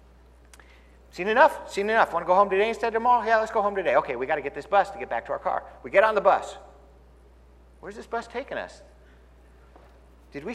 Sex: male